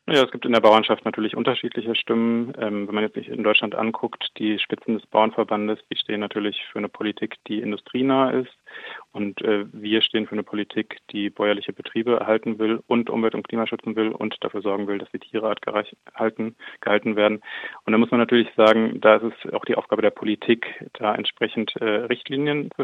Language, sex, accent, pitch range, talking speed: German, male, German, 105-115 Hz, 200 wpm